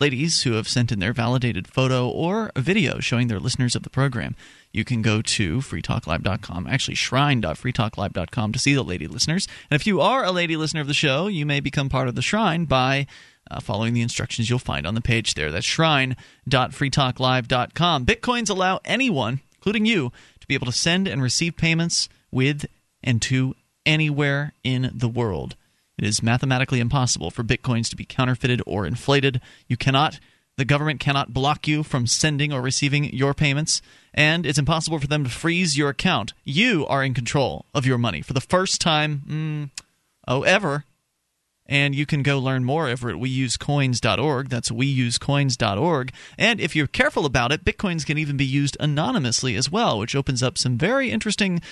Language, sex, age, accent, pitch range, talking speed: English, male, 30-49, American, 125-155 Hz, 180 wpm